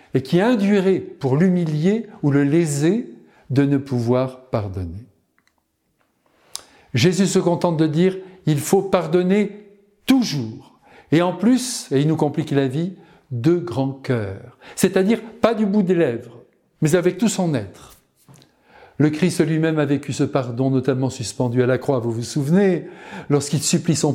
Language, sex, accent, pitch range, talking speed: French, male, French, 140-195 Hz, 155 wpm